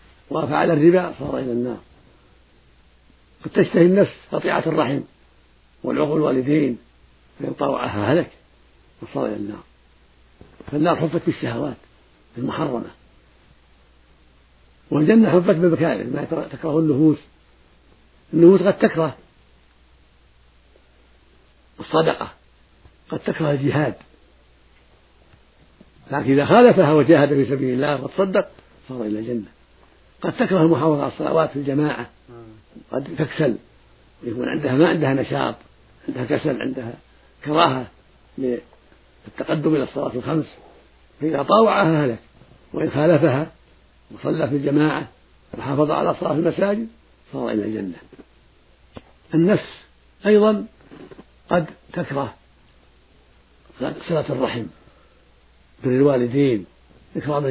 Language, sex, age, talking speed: Arabic, male, 50-69, 95 wpm